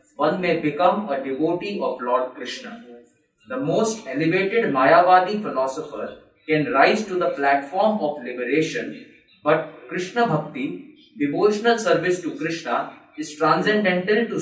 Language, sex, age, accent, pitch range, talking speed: English, male, 20-39, Indian, 150-205 Hz, 125 wpm